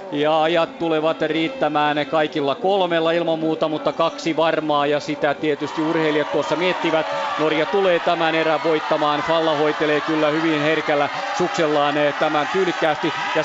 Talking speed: 130 wpm